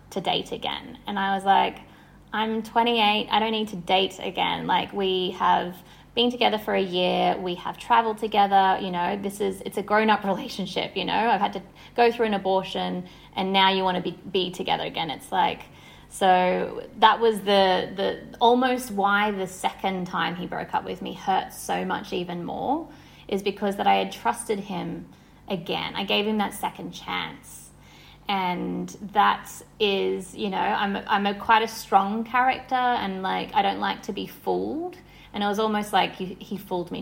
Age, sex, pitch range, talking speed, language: 20-39, female, 190-220 Hz, 195 wpm, English